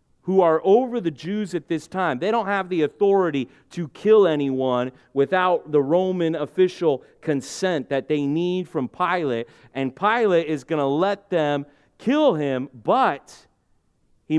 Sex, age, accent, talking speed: male, 30-49, American, 155 wpm